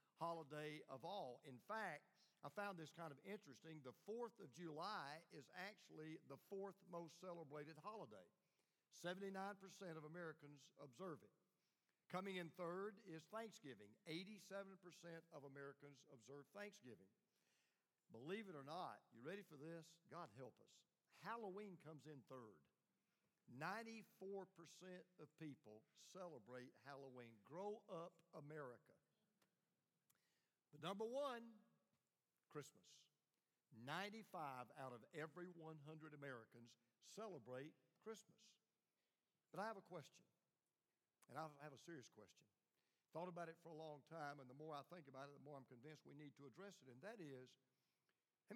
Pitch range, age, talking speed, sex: 140-190 Hz, 50-69, 135 wpm, male